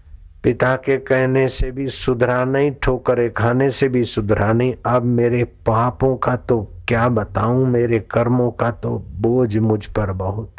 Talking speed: 160 wpm